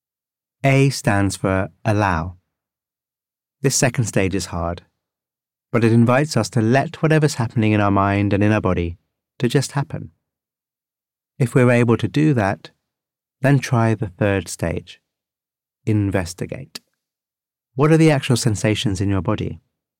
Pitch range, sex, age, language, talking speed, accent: 100-125 Hz, male, 30-49, English, 140 wpm, British